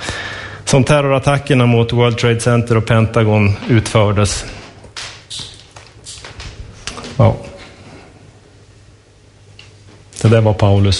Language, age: Swedish, 30-49